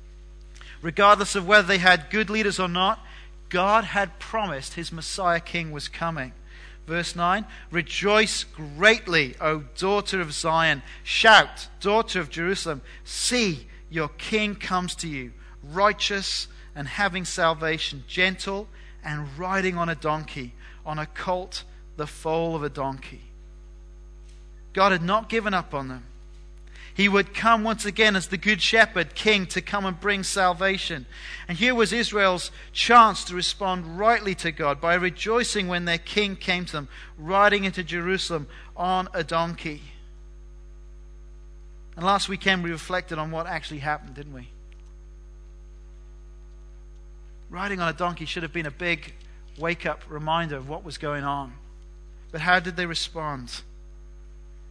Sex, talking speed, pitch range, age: male, 145 wpm, 130-190 Hz, 40-59